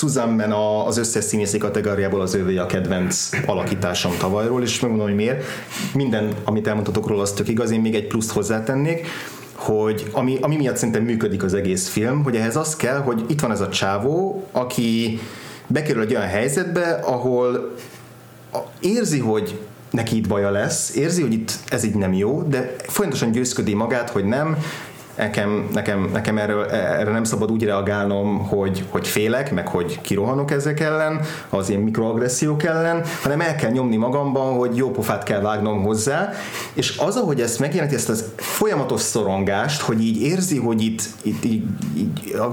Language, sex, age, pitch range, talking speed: Hungarian, male, 30-49, 105-135 Hz, 170 wpm